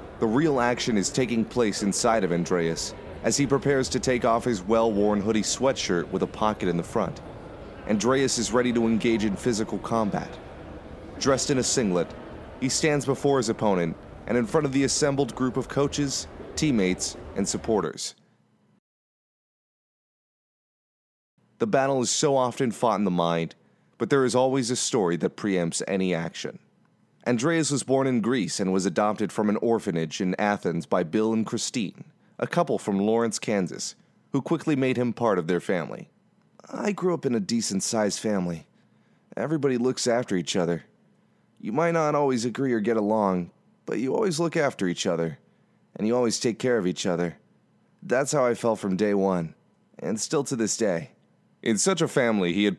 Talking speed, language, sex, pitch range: 180 wpm, English, male, 100-135 Hz